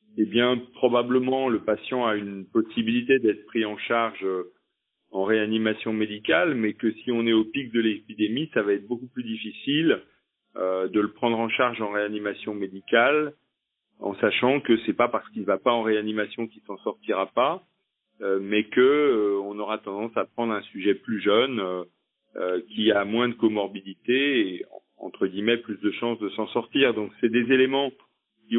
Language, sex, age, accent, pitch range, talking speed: French, male, 40-59, French, 105-130 Hz, 185 wpm